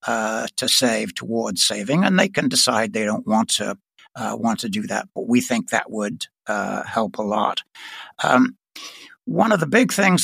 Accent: American